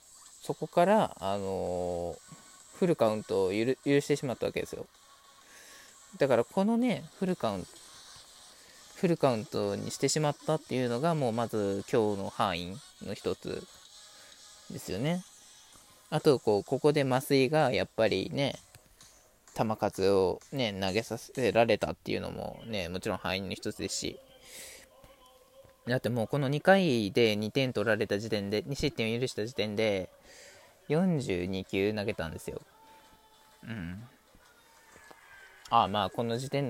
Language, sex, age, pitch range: Japanese, male, 20-39, 105-150 Hz